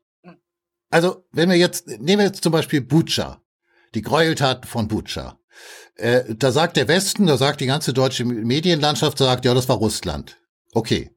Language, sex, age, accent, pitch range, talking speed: German, male, 60-79, German, 120-165 Hz, 165 wpm